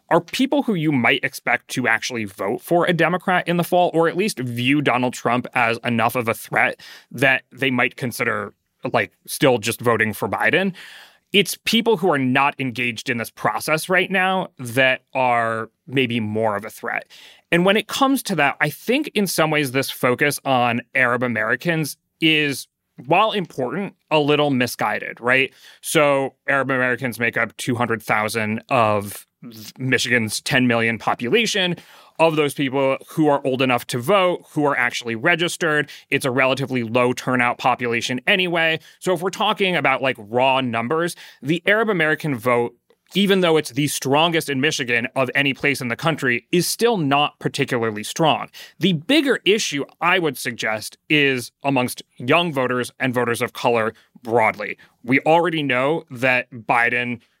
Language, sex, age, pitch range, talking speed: English, male, 30-49, 125-165 Hz, 165 wpm